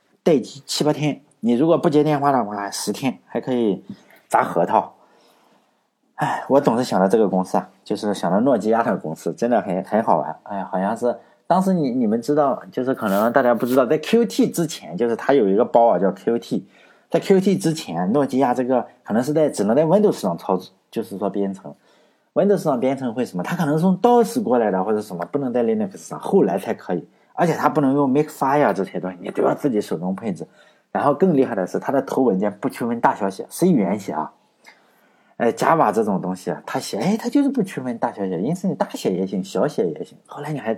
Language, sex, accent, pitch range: Chinese, male, native, 105-160 Hz